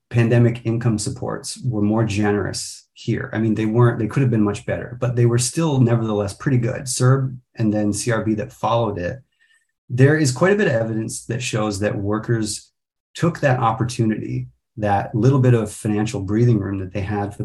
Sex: male